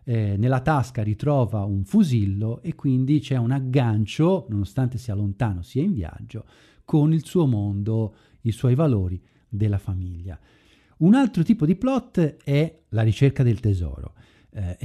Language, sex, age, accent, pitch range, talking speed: Italian, male, 50-69, native, 110-160 Hz, 150 wpm